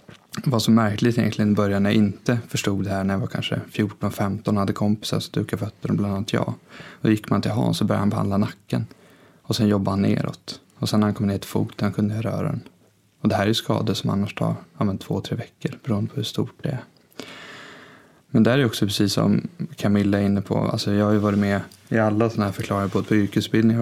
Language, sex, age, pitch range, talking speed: Swedish, male, 20-39, 100-115 Hz, 240 wpm